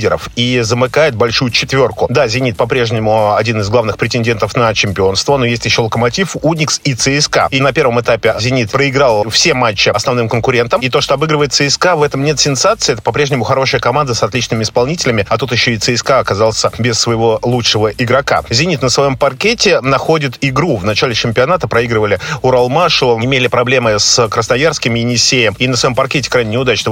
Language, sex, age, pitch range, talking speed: Russian, male, 30-49, 115-135 Hz, 175 wpm